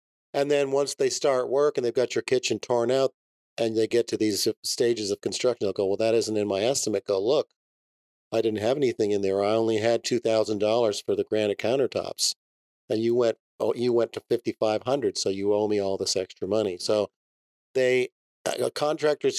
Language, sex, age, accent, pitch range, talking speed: English, male, 50-69, American, 105-125 Hz, 200 wpm